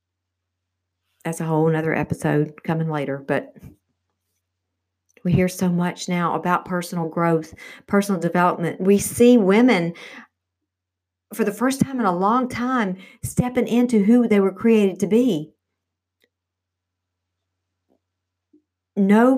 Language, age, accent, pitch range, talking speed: English, 50-69, American, 140-185 Hz, 120 wpm